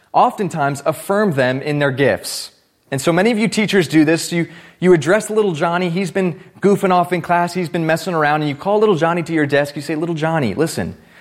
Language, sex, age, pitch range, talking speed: English, male, 30-49, 155-205 Hz, 225 wpm